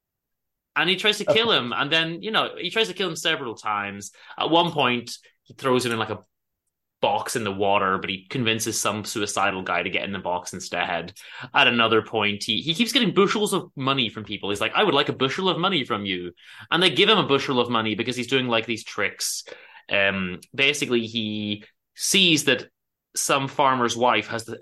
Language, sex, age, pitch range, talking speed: English, male, 20-39, 110-160 Hz, 215 wpm